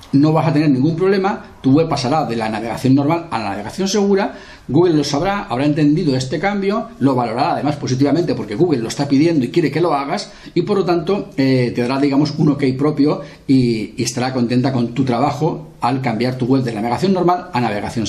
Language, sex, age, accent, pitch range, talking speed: Spanish, male, 40-59, Spanish, 125-155 Hz, 215 wpm